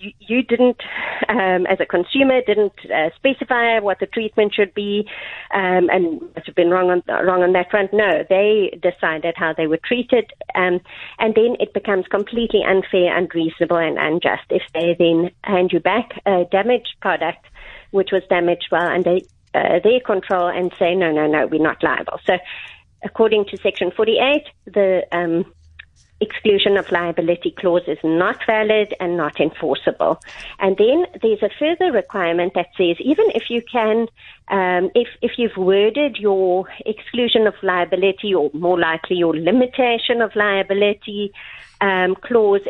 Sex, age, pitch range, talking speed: female, 30-49, 175-220 Hz, 160 wpm